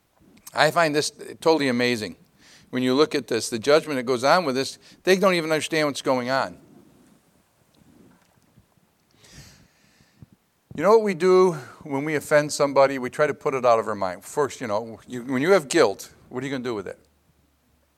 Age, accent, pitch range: 50-69, American, 110-155 Hz